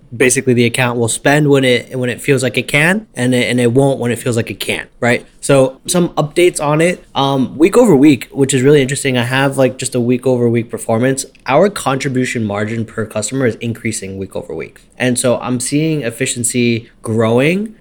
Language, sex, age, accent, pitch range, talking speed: English, male, 20-39, American, 115-140 Hz, 210 wpm